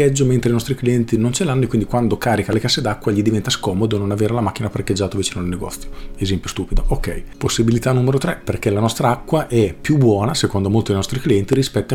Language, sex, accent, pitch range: Italian, male, native, 100-125 Hz